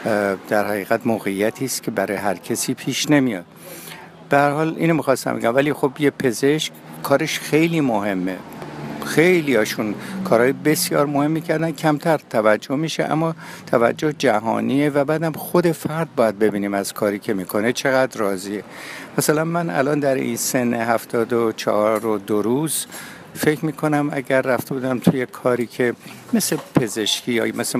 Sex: male